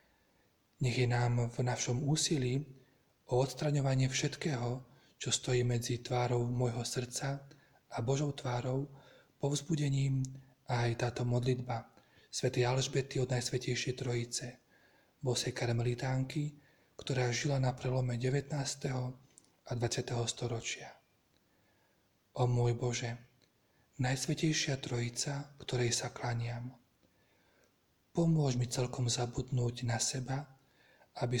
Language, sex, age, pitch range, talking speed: Slovak, male, 40-59, 120-135 Hz, 100 wpm